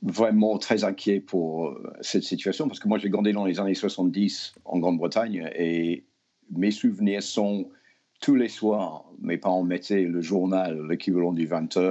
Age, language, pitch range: 50-69, French, 90-105 Hz